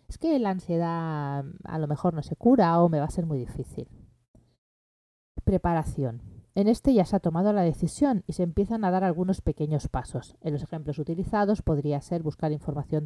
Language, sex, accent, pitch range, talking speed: Spanish, female, Spanish, 145-185 Hz, 195 wpm